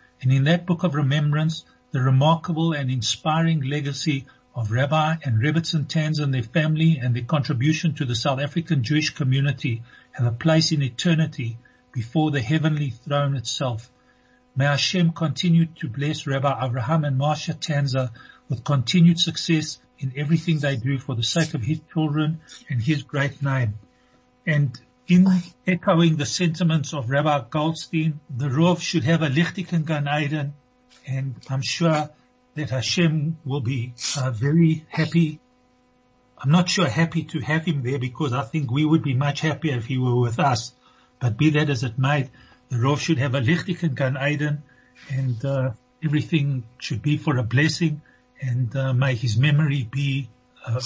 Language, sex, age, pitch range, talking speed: English, male, 60-79, 130-160 Hz, 165 wpm